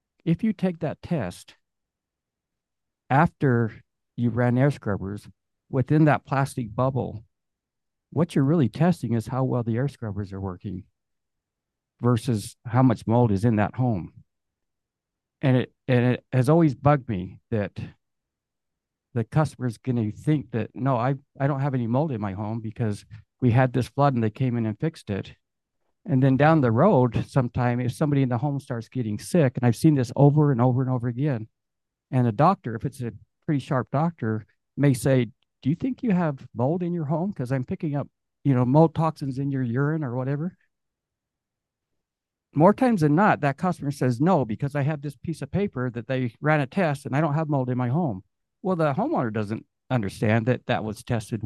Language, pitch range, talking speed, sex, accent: English, 115-145 Hz, 195 wpm, male, American